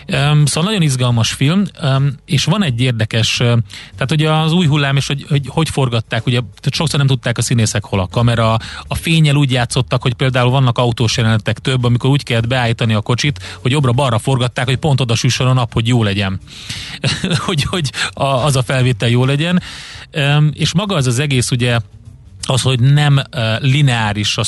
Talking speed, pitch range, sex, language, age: 185 wpm, 115-140 Hz, male, Hungarian, 30-49